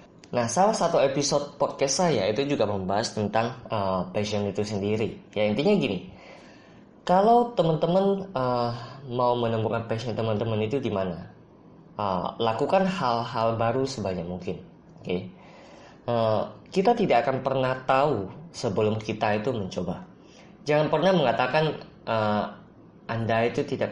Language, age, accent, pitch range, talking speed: Indonesian, 20-39, native, 105-140 Hz, 130 wpm